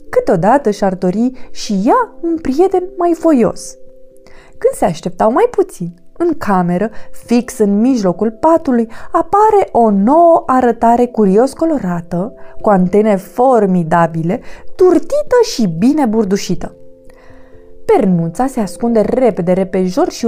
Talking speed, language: 120 wpm, Romanian